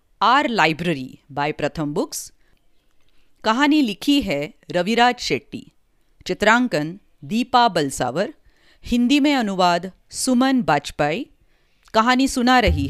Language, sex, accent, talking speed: English, female, Indian, 100 wpm